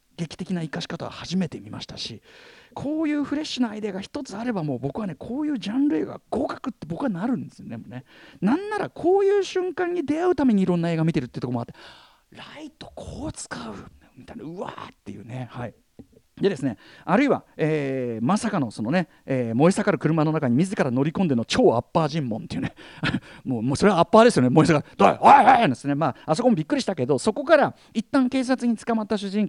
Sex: male